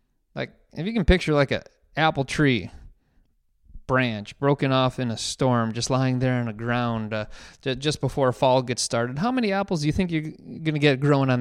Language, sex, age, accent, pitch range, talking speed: English, male, 30-49, American, 125-185 Hz, 200 wpm